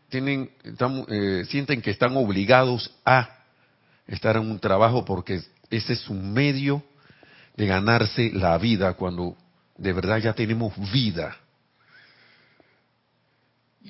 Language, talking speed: Spanish, 120 wpm